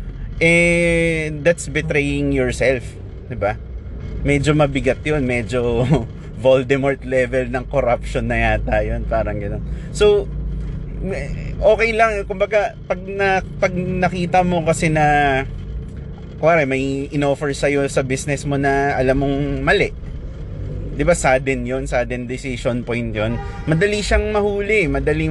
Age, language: 20-39, Filipino